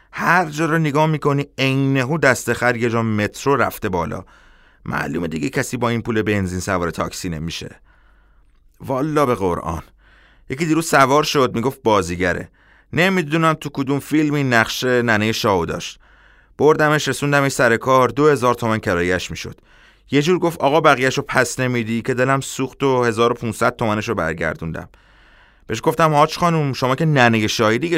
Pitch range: 105-140 Hz